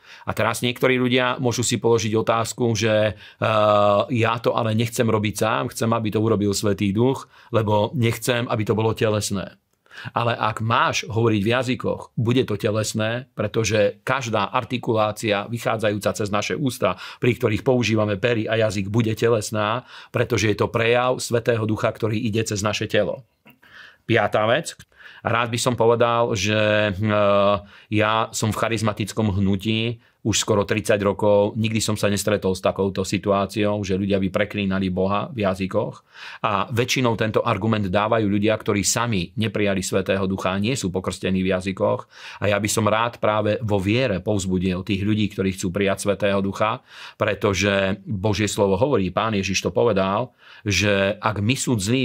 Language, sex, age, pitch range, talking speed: Slovak, male, 40-59, 100-115 Hz, 160 wpm